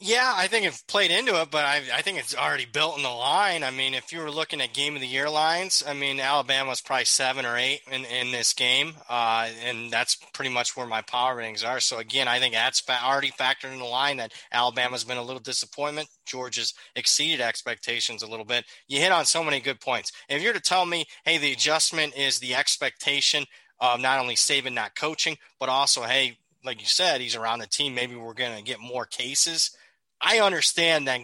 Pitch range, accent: 120-150 Hz, American